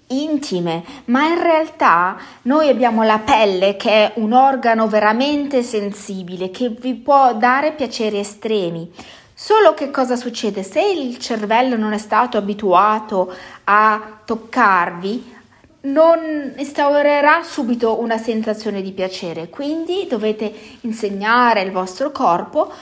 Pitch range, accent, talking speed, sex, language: 195-255 Hz, native, 120 wpm, female, Italian